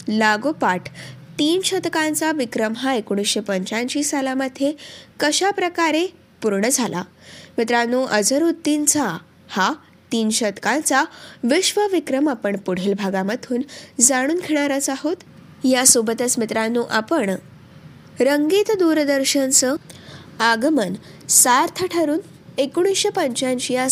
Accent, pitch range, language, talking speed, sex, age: native, 220-305 Hz, Marathi, 85 wpm, female, 20-39